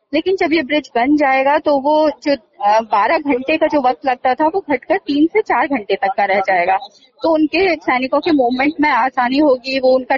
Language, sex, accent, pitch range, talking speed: Hindi, female, native, 240-315 Hz, 210 wpm